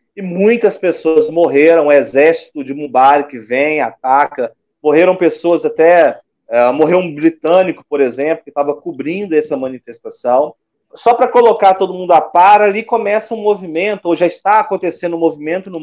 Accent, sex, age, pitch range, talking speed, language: Brazilian, male, 40-59, 145-195 Hz, 160 wpm, Portuguese